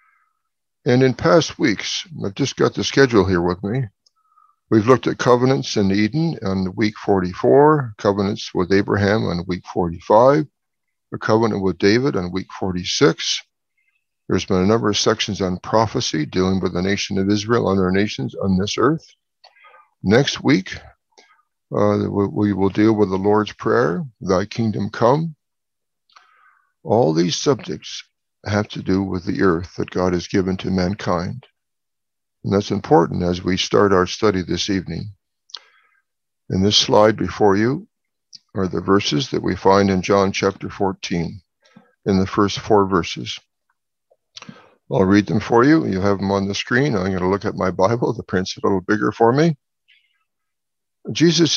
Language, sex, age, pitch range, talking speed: English, male, 60-79, 95-115 Hz, 160 wpm